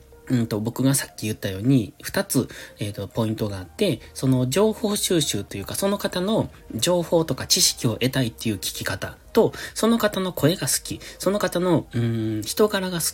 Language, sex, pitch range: Japanese, male, 105-170 Hz